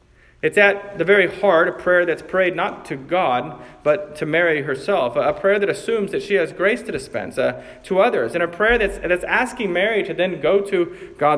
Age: 40-59